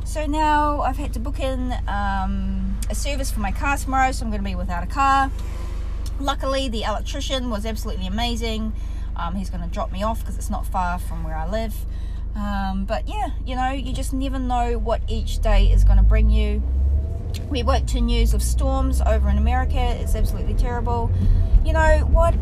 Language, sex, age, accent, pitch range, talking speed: English, female, 20-39, Australian, 70-100 Hz, 195 wpm